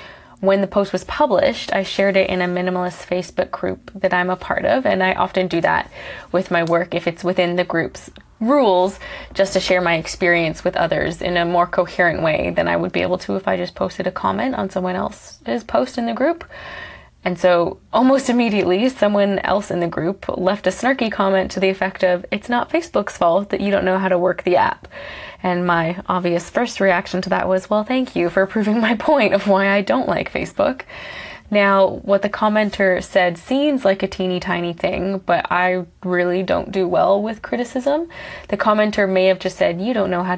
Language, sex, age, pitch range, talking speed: English, female, 20-39, 180-210 Hz, 210 wpm